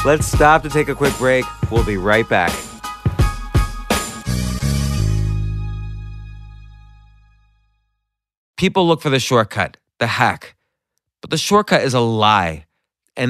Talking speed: 115 wpm